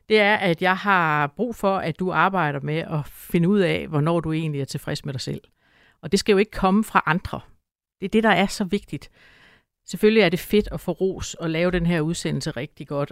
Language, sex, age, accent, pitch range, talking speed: Danish, female, 60-79, native, 145-180 Hz, 240 wpm